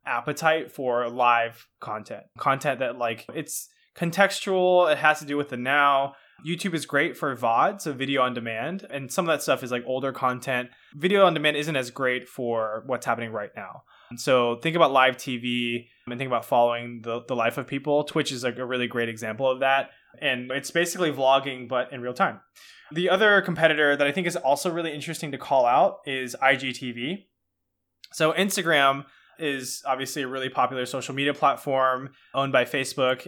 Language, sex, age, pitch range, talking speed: English, male, 20-39, 125-155 Hz, 190 wpm